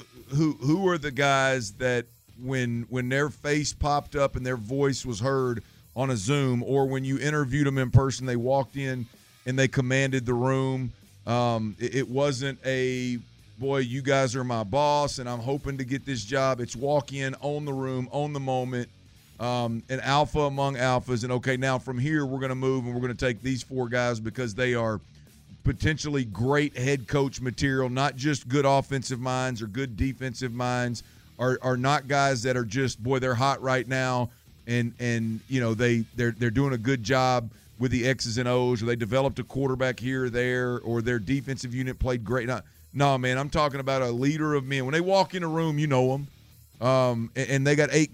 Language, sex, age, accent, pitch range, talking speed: English, male, 40-59, American, 120-135 Hz, 210 wpm